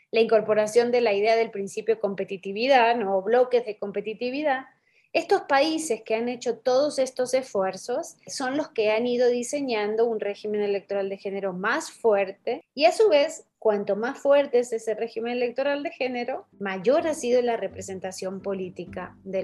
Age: 20-39